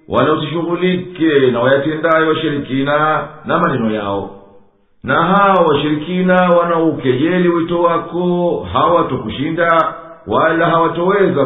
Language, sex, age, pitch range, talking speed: English, male, 50-69, 145-170 Hz, 95 wpm